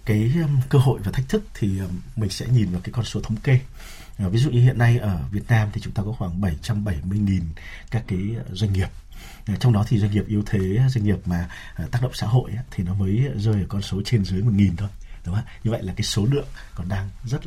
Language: Vietnamese